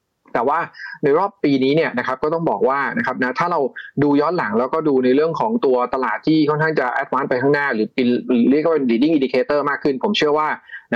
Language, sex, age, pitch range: Thai, male, 20-39, 125-165 Hz